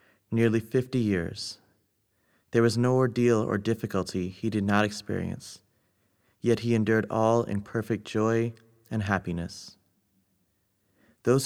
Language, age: English, 30-49